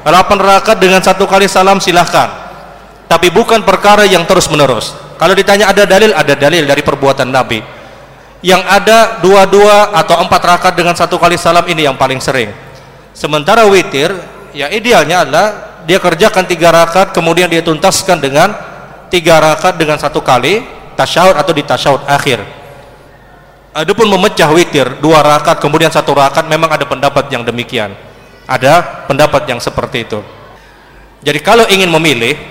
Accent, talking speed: native, 150 wpm